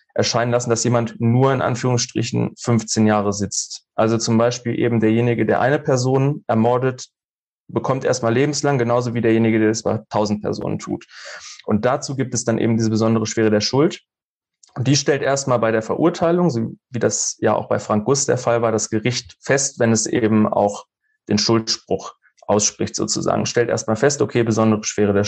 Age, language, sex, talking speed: 30-49, German, male, 185 wpm